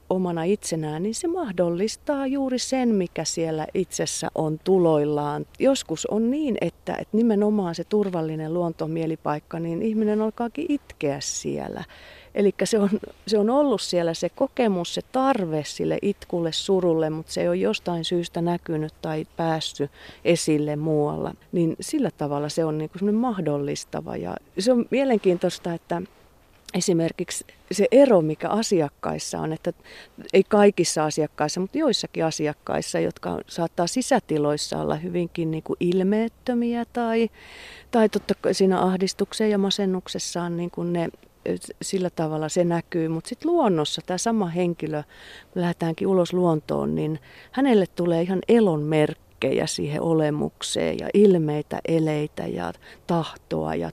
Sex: female